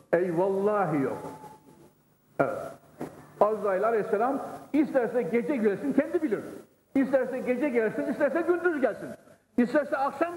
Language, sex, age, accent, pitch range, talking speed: Turkish, male, 60-79, native, 170-255 Hz, 105 wpm